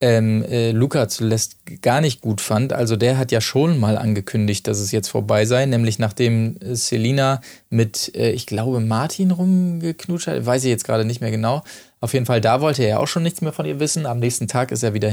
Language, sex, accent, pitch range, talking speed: German, male, German, 110-130 Hz, 235 wpm